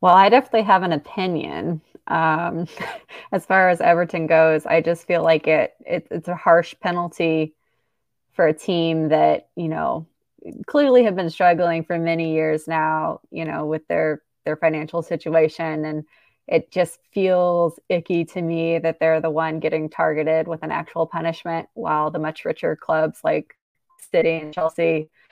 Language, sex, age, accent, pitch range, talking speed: English, female, 20-39, American, 160-180 Hz, 165 wpm